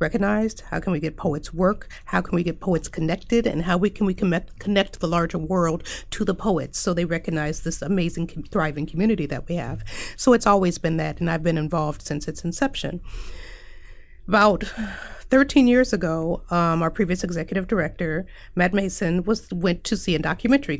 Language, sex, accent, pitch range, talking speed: English, female, American, 165-240 Hz, 180 wpm